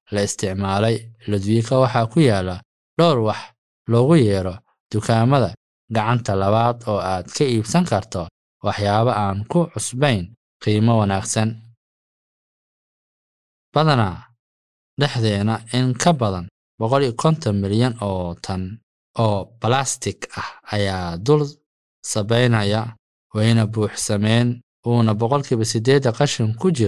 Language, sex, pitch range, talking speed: Swahili, male, 100-125 Hz, 100 wpm